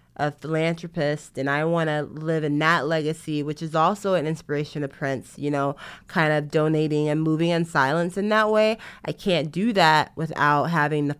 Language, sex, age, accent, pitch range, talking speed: English, female, 20-39, American, 155-185 Hz, 195 wpm